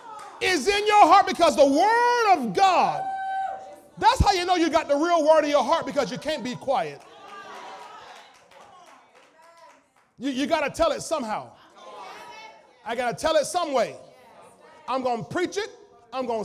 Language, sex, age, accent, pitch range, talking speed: English, male, 40-59, American, 260-385 Hz, 170 wpm